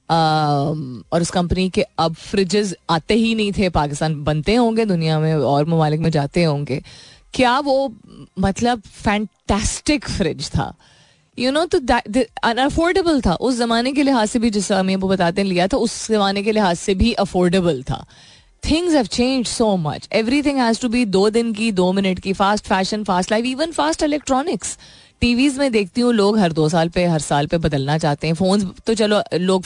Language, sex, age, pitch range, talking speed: Hindi, female, 20-39, 170-240 Hz, 190 wpm